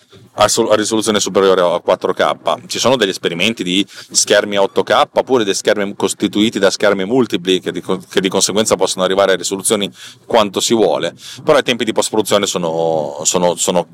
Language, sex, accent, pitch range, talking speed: Italian, male, native, 95-125 Hz, 170 wpm